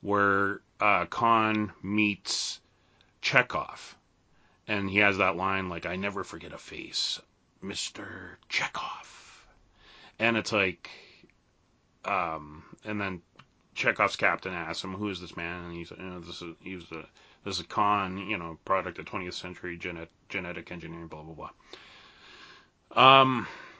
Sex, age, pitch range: male, 30-49, 90-110 Hz